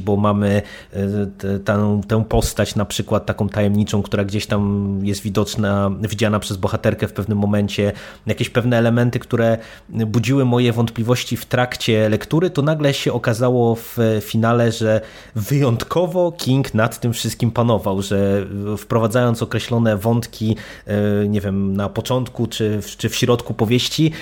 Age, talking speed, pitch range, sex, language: 20-39, 135 wpm, 105-125 Hz, male, Polish